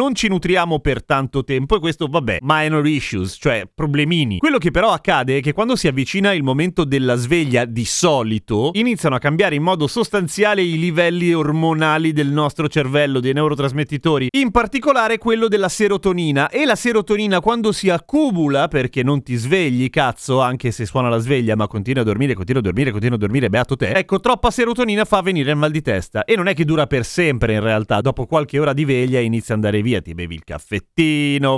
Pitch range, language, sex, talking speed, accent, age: 130-180 Hz, Italian, male, 200 wpm, native, 30-49